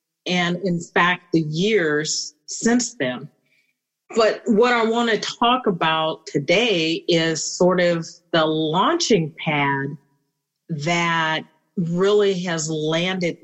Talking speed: 105 wpm